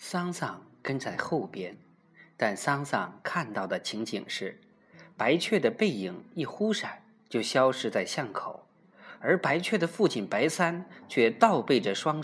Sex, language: male, Chinese